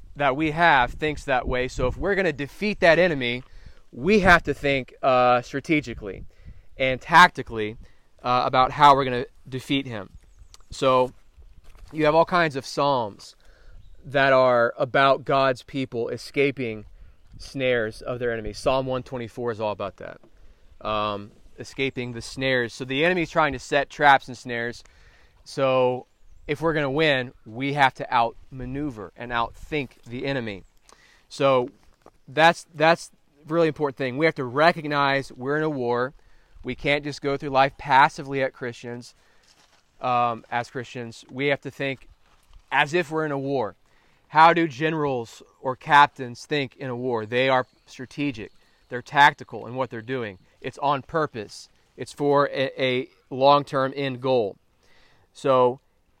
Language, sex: English, male